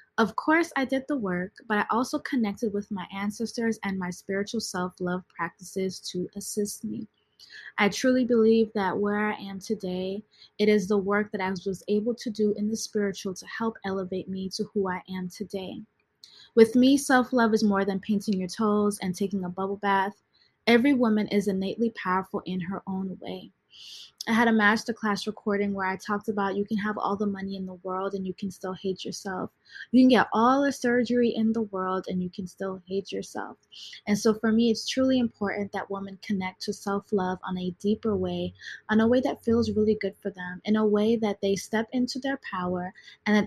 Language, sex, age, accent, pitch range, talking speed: English, female, 20-39, American, 190-225 Hz, 205 wpm